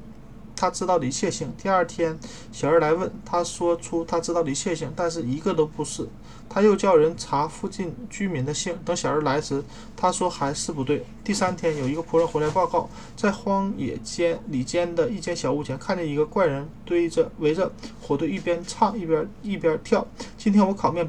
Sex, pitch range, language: male, 150-195 Hz, Chinese